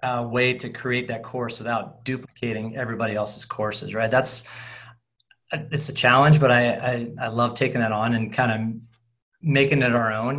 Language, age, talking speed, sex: English, 30-49, 180 wpm, male